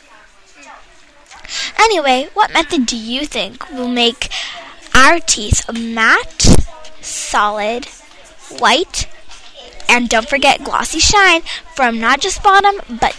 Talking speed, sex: 105 wpm, female